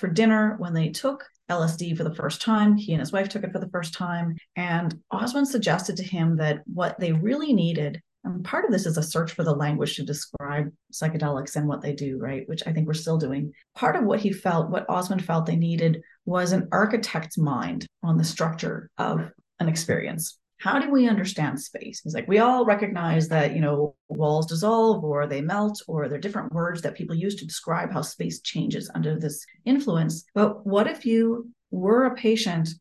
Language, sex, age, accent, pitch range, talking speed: English, female, 30-49, American, 155-205 Hz, 210 wpm